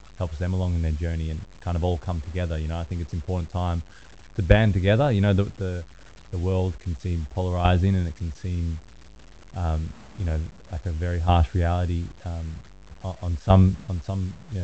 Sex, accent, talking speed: male, Australian, 200 wpm